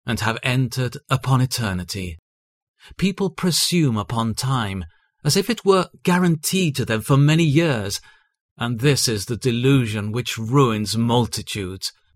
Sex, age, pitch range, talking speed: male, 40-59, 110-145 Hz, 135 wpm